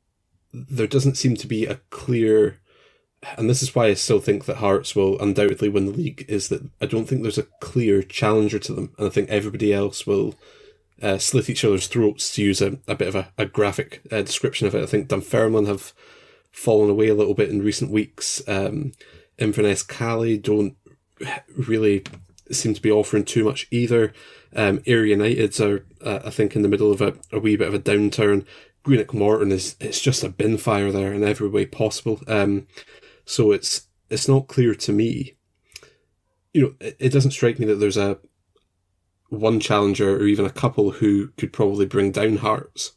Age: 20-39